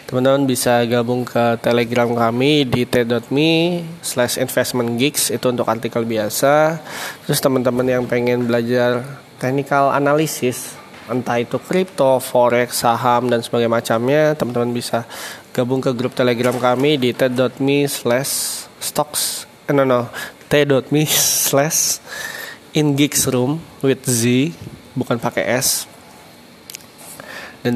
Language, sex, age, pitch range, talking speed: English, male, 20-39, 120-140 Hz, 110 wpm